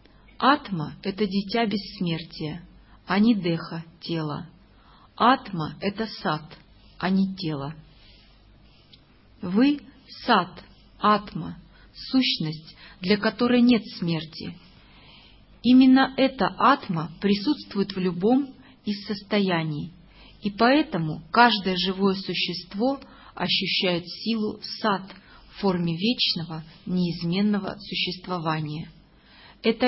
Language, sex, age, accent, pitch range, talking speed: Russian, female, 40-59, native, 170-220 Hz, 90 wpm